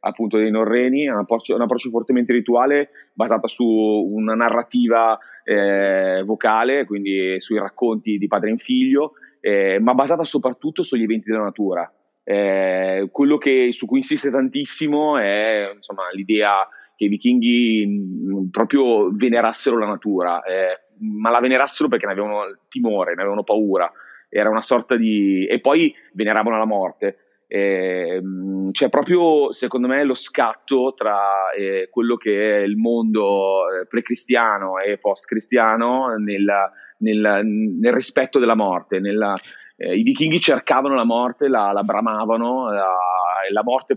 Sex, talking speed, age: male, 145 wpm, 30-49